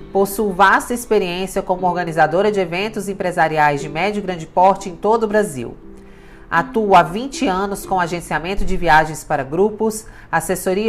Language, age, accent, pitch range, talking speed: Portuguese, 40-59, Brazilian, 165-205 Hz, 155 wpm